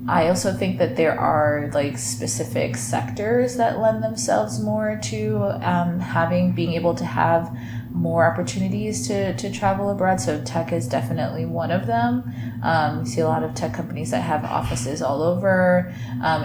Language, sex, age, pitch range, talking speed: English, female, 20-39, 115-165 Hz, 170 wpm